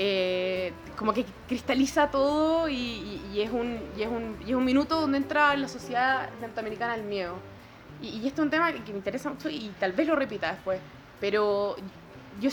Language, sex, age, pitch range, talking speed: Spanish, female, 20-39, 205-285 Hz, 205 wpm